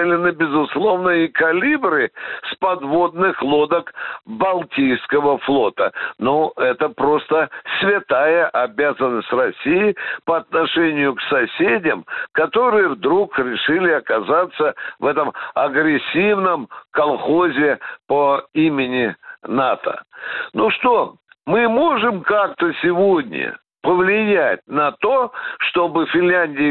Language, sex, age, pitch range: Russian, male, 60-79, 150-215 Hz